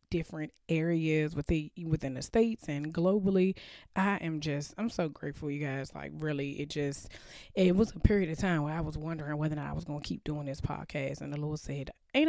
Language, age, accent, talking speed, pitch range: English, 20-39, American, 230 wpm, 145-170 Hz